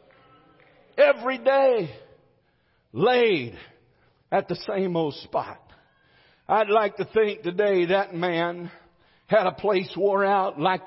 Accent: American